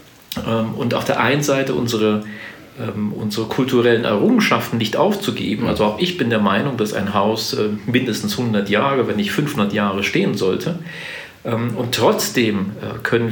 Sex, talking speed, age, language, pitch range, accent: male, 145 wpm, 40-59, German, 100-120 Hz, German